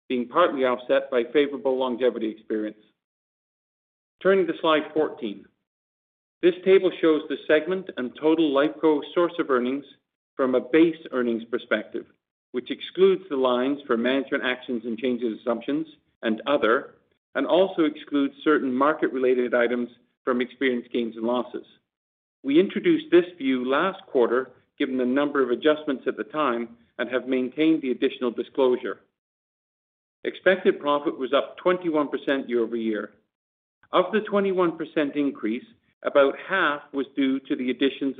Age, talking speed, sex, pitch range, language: 50-69, 140 wpm, male, 125-160 Hz, English